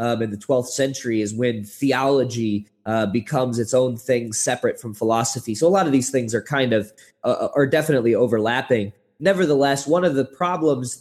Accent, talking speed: American, 185 wpm